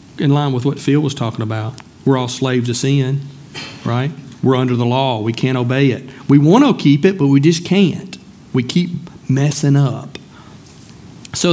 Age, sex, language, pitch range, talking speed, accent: 40-59, male, English, 125-145 Hz, 185 wpm, American